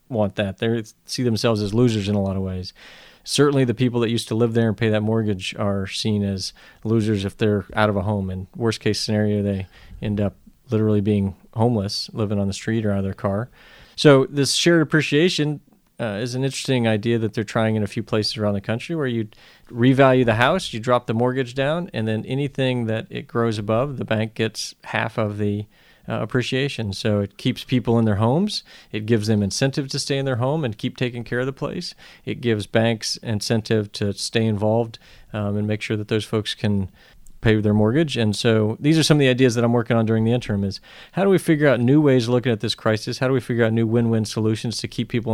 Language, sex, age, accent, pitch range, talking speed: English, male, 40-59, American, 105-125 Hz, 235 wpm